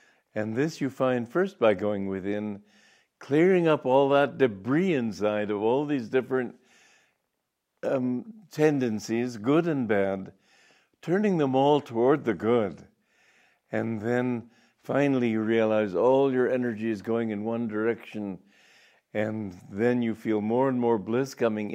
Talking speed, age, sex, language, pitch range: 140 wpm, 60-79, male, English, 105-135 Hz